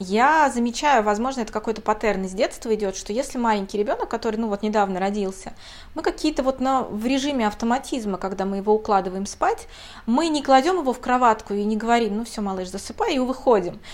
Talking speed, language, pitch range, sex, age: 195 wpm, Russian, 200-245 Hz, female, 20-39